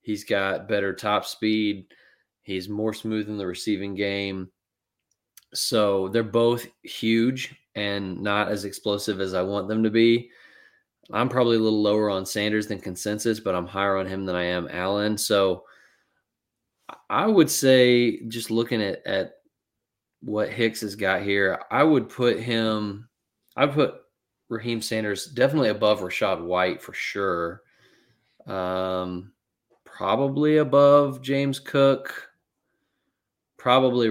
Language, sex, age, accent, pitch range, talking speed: English, male, 20-39, American, 95-115 Hz, 135 wpm